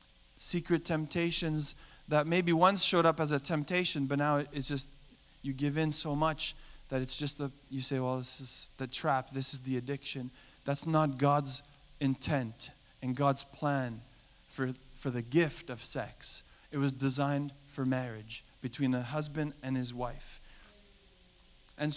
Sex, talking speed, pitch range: male, 160 wpm, 135-160 Hz